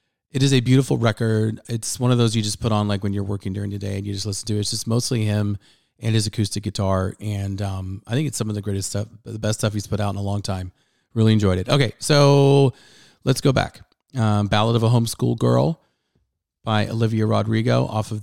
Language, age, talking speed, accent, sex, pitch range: English, 30-49, 240 wpm, American, male, 100-120 Hz